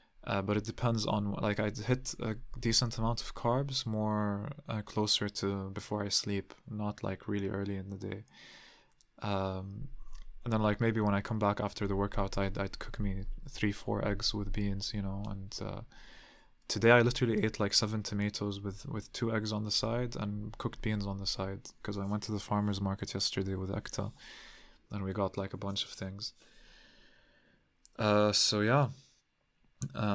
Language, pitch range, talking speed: English, 100-110 Hz, 185 wpm